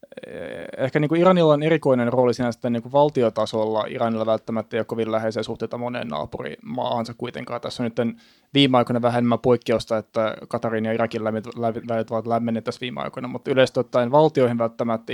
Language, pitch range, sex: Finnish, 115-125 Hz, male